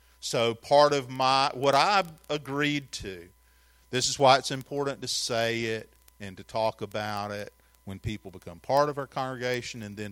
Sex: male